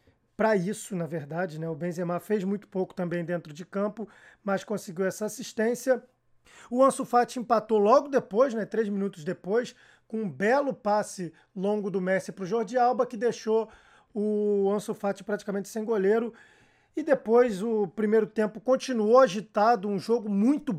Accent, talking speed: Brazilian, 160 wpm